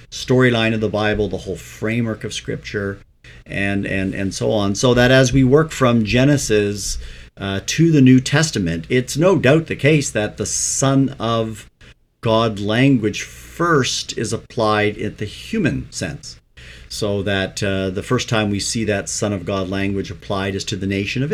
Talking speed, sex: 175 wpm, male